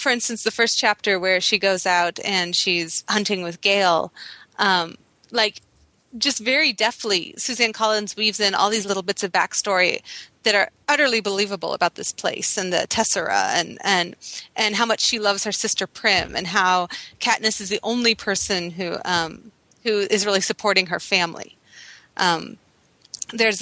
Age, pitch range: 30-49, 190-235 Hz